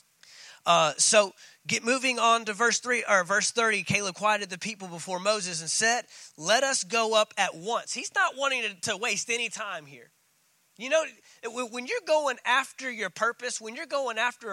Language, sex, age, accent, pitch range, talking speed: English, male, 20-39, American, 210-275 Hz, 190 wpm